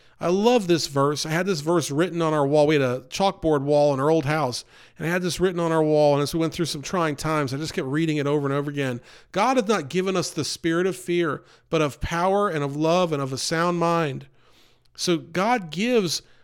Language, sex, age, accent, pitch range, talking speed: English, male, 40-59, American, 145-185 Hz, 250 wpm